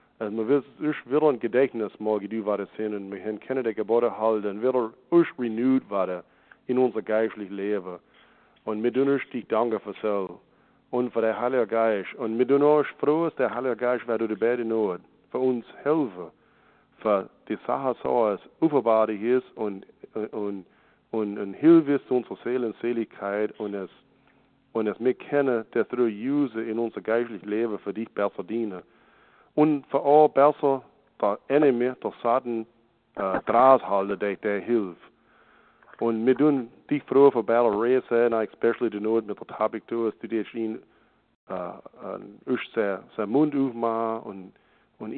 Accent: German